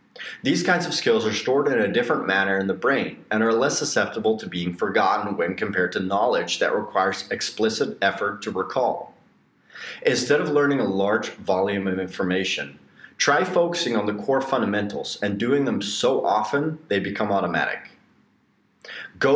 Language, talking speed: English, 165 wpm